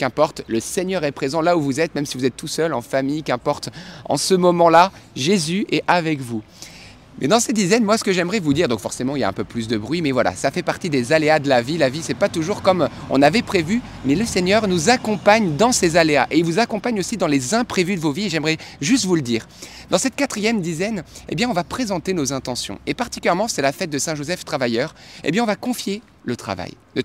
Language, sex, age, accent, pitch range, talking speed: French, male, 30-49, French, 125-180 Hz, 260 wpm